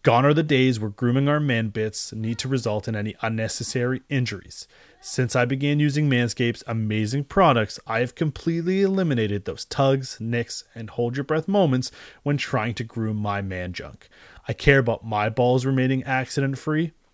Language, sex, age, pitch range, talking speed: English, male, 30-49, 115-145 Hz, 170 wpm